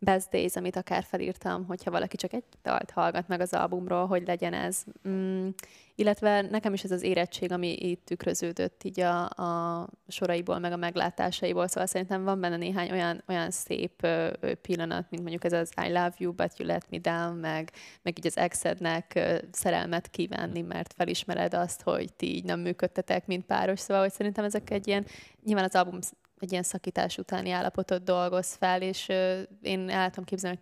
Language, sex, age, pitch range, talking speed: Hungarian, female, 20-39, 175-195 Hz, 185 wpm